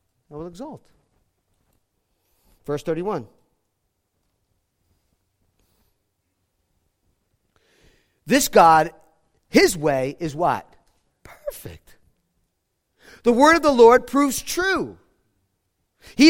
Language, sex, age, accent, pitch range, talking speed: English, male, 40-59, American, 160-240 Hz, 75 wpm